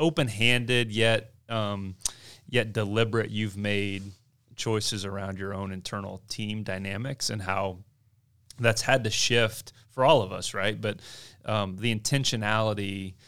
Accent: American